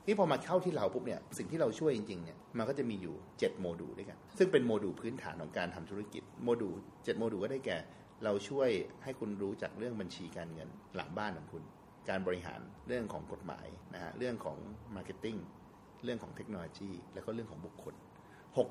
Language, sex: Thai, male